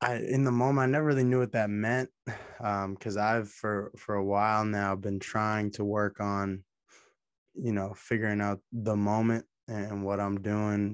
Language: English